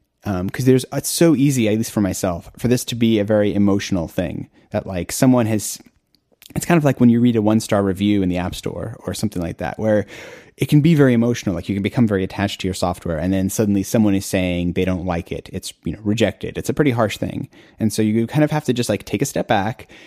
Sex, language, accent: male, English, American